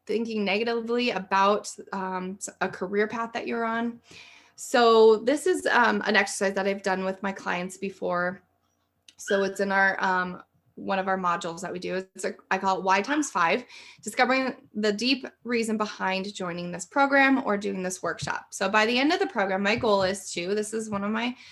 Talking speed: 195 wpm